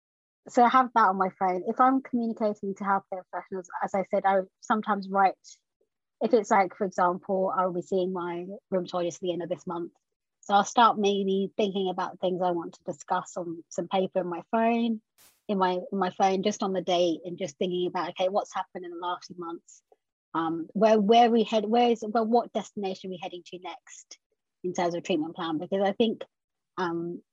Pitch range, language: 180-205 Hz, English